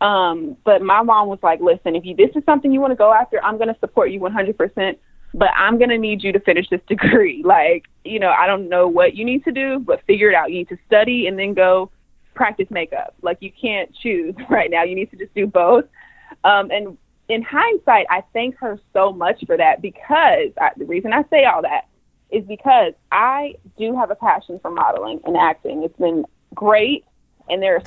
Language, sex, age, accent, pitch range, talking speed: English, female, 20-39, American, 190-295 Hz, 225 wpm